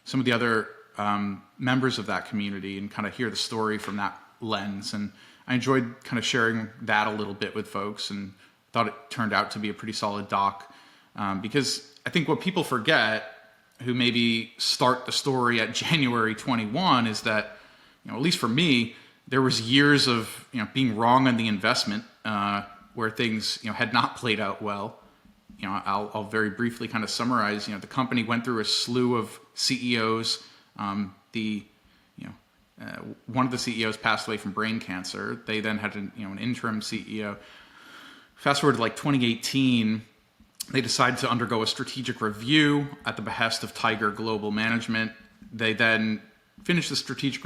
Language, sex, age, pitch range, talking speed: English, male, 30-49, 105-125 Hz, 190 wpm